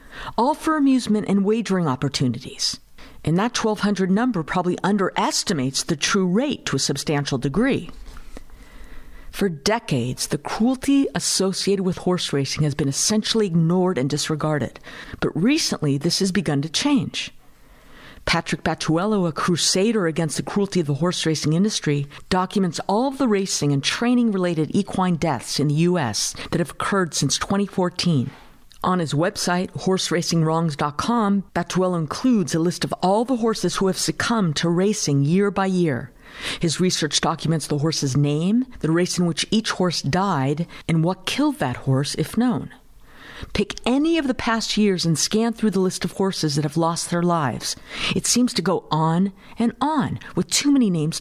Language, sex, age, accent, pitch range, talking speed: English, female, 50-69, American, 155-215 Hz, 160 wpm